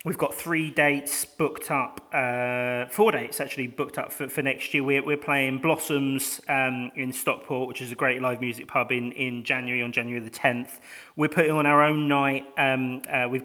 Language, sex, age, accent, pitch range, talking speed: English, male, 30-49, British, 125-140 Hz, 205 wpm